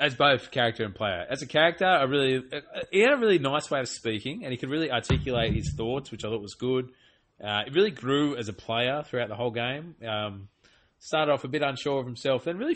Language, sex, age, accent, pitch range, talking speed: English, male, 20-39, Australian, 115-140 Hz, 240 wpm